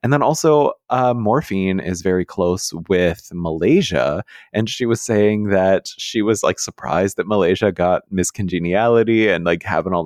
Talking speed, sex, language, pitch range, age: 160 wpm, male, English, 85-105 Hz, 30-49